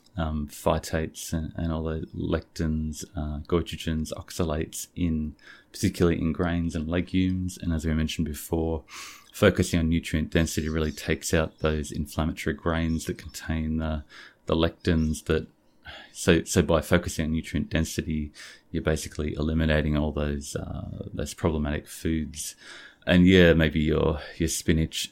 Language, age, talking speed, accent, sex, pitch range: English, 30-49, 140 wpm, Australian, male, 75-85 Hz